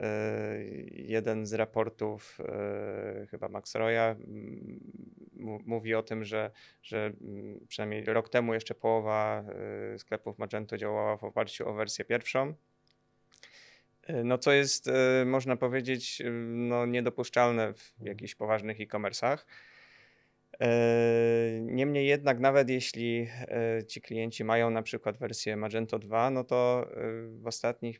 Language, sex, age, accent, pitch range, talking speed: Polish, male, 20-39, native, 110-120 Hz, 110 wpm